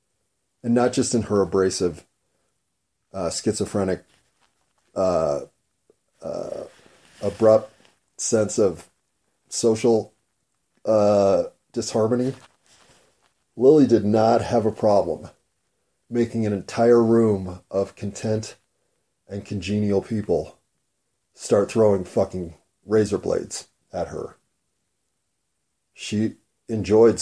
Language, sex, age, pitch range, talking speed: English, male, 30-49, 100-115 Hz, 90 wpm